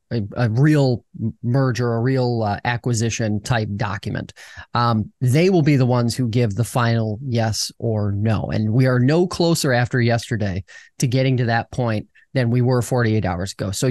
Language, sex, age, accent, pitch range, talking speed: English, male, 30-49, American, 115-135 Hz, 180 wpm